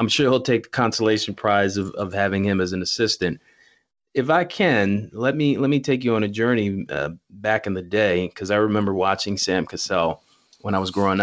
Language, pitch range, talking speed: English, 95-120 Hz, 220 wpm